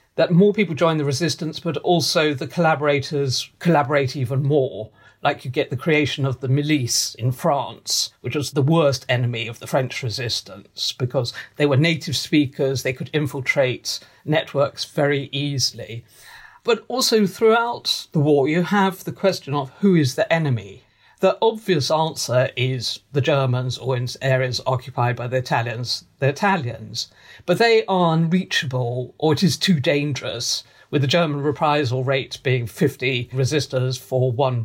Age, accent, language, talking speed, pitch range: 50-69, British, English, 160 wpm, 125-160 Hz